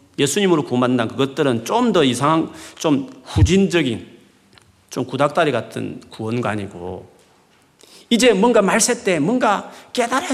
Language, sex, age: Korean, male, 40-59